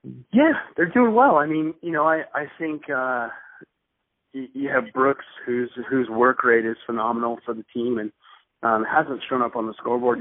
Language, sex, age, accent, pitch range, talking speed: English, male, 30-49, American, 110-130 Hz, 195 wpm